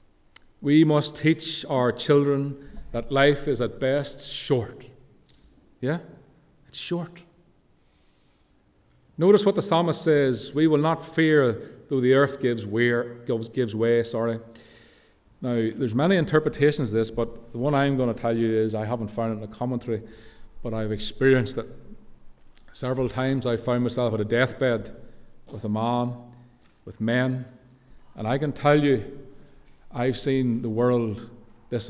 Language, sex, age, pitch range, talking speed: English, male, 40-59, 115-145 Hz, 150 wpm